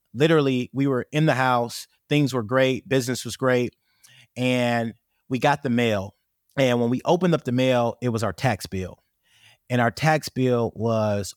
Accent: American